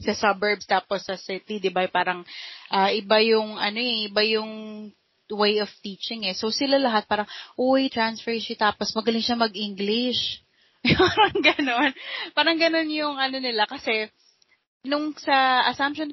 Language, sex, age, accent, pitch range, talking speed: Filipino, female, 20-39, native, 210-275 Hz, 155 wpm